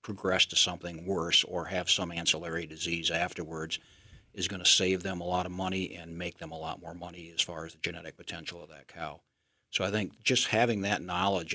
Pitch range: 85-100 Hz